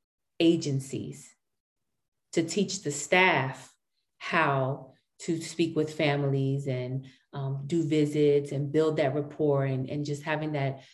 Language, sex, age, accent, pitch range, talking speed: English, female, 30-49, American, 140-165 Hz, 125 wpm